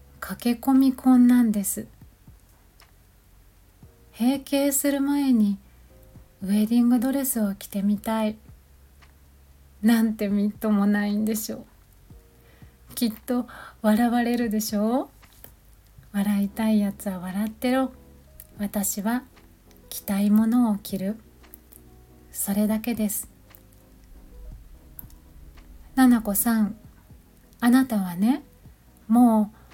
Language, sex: Japanese, female